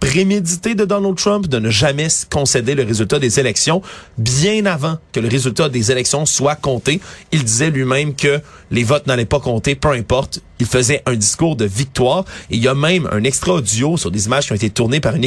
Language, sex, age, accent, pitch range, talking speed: French, male, 30-49, Canadian, 115-145 Hz, 210 wpm